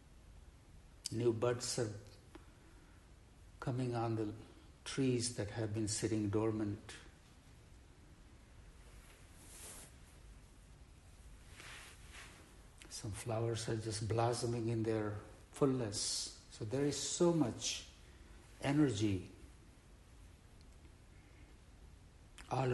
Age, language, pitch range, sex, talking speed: 60-79, English, 85-115 Hz, male, 70 wpm